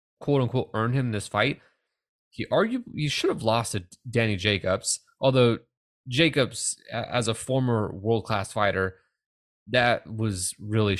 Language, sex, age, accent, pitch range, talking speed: English, male, 20-39, American, 100-125 Hz, 130 wpm